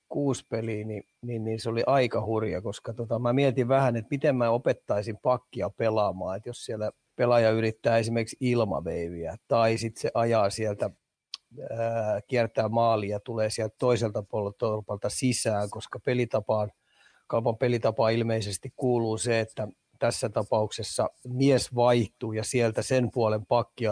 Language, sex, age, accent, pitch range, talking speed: Finnish, male, 30-49, native, 110-125 Hz, 145 wpm